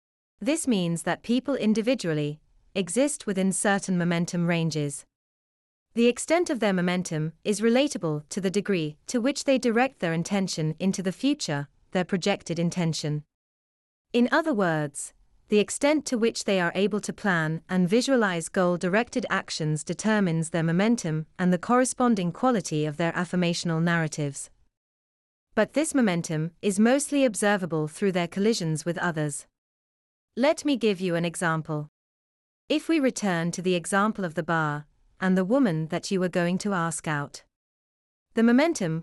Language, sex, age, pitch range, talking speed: English, female, 30-49, 160-225 Hz, 150 wpm